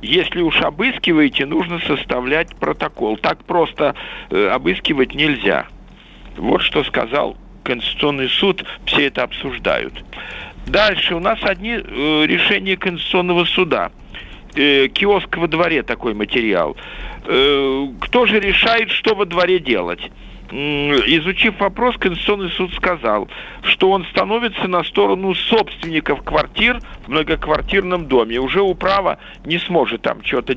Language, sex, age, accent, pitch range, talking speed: Russian, male, 50-69, native, 150-210 Hz, 120 wpm